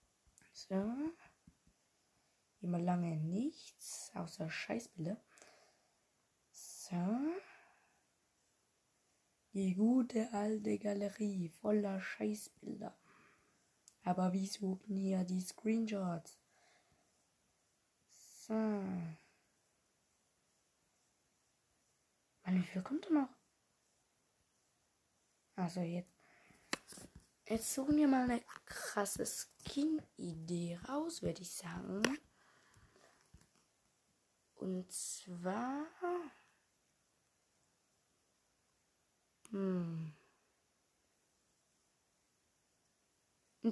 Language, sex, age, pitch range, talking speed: German, female, 20-39, 185-250 Hz, 60 wpm